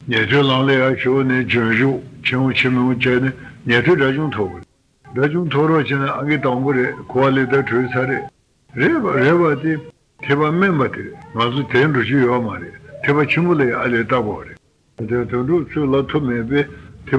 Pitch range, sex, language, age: 120-145 Hz, male, Italian, 60-79